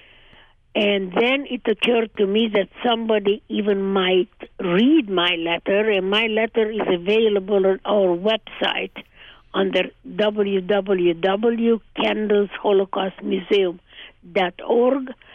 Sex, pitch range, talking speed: female, 190-225 Hz, 90 wpm